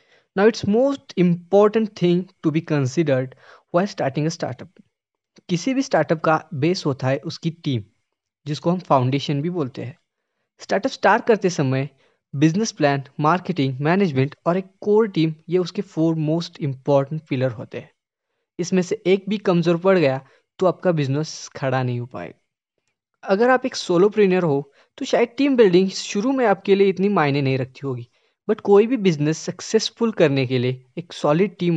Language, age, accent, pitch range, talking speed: Hindi, 20-39, native, 140-195 Hz, 175 wpm